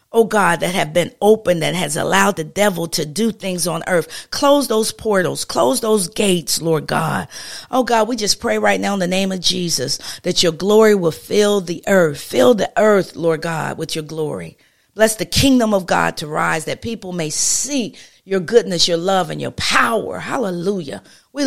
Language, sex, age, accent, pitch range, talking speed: English, female, 50-69, American, 170-215 Hz, 200 wpm